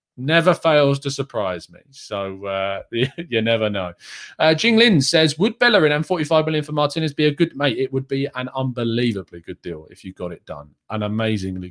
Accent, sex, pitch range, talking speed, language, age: British, male, 110-165 Hz, 205 wpm, English, 20-39